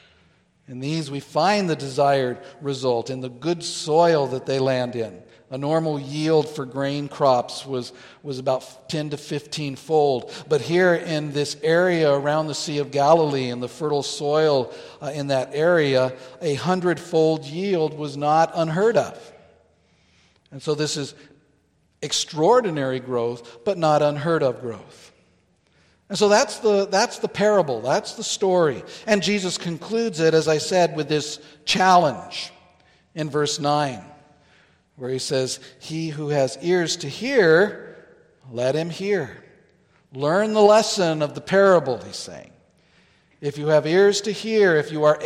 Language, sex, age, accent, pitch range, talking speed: English, male, 50-69, American, 140-175 Hz, 150 wpm